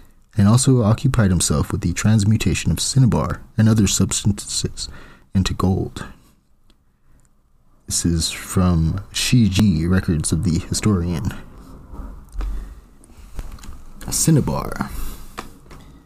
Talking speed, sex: 85 wpm, male